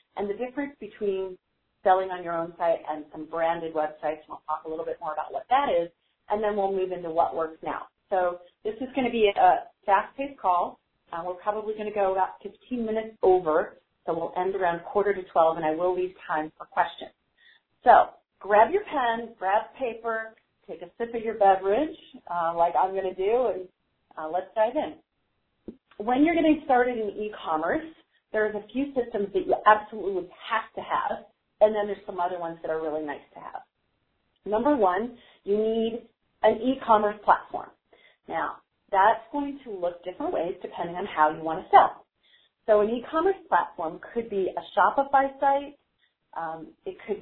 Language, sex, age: English, female, 40-59